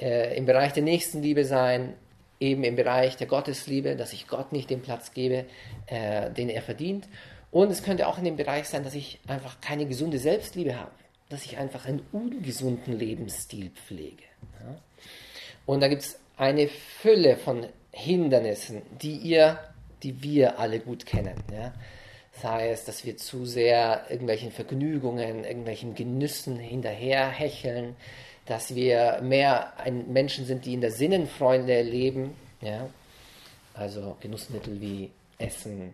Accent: German